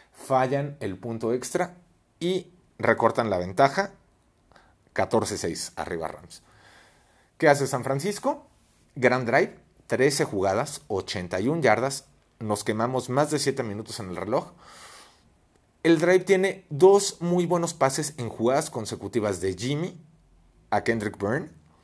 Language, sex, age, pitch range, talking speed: Spanish, male, 40-59, 100-140 Hz, 125 wpm